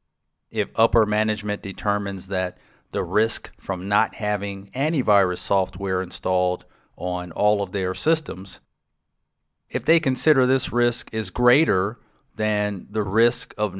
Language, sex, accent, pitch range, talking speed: English, male, American, 95-115 Hz, 125 wpm